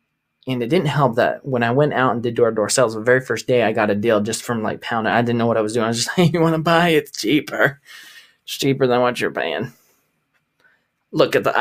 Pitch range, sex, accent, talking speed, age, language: 115-135 Hz, male, American, 270 wpm, 20-39, English